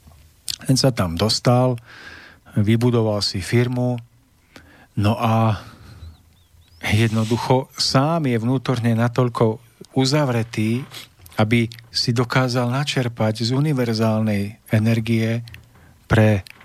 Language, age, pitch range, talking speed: Slovak, 50-69, 100-125 Hz, 85 wpm